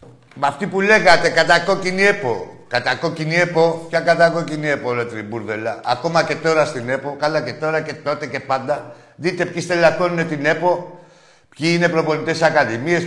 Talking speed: 150 wpm